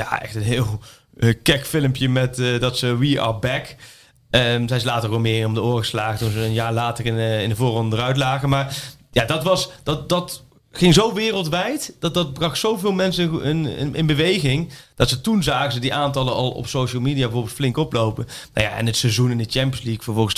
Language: Dutch